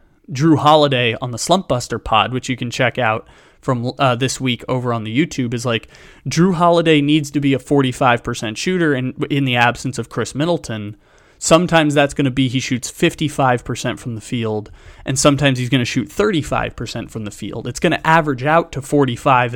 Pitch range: 120-150 Hz